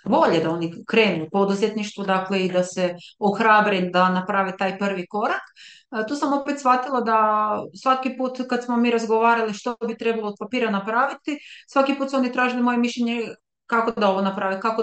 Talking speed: 175 wpm